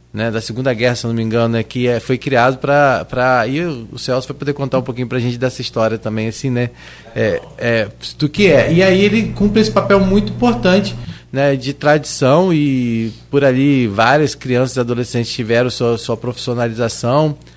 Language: Portuguese